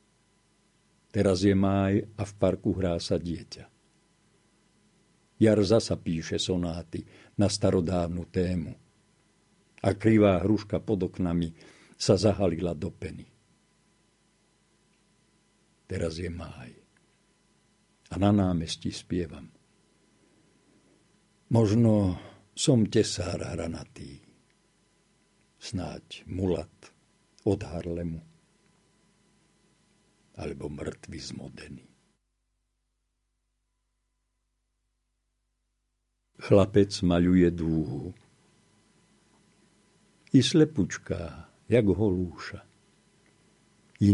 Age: 50-69